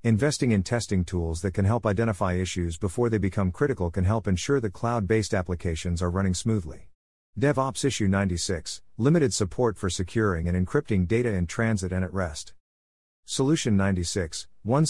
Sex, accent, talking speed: male, American, 160 wpm